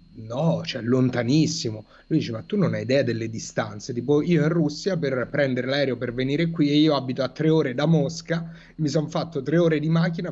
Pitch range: 125-155 Hz